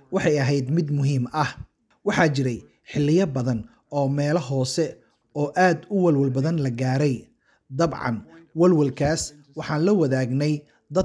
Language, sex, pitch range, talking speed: English, male, 130-165 Hz, 135 wpm